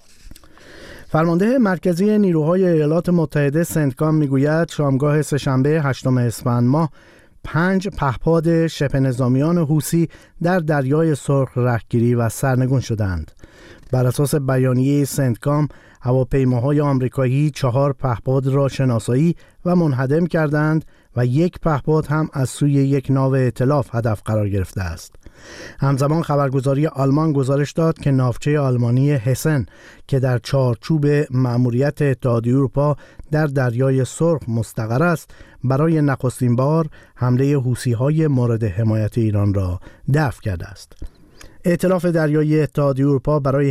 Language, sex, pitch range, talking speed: Persian, male, 125-155 Hz, 120 wpm